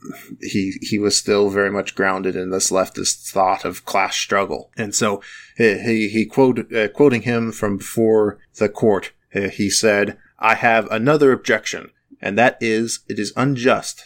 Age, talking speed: 30-49, 165 wpm